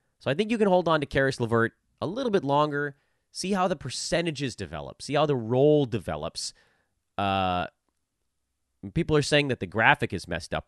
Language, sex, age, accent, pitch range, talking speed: English, male, 30-49, American, 95-150 Hz, 190 wpm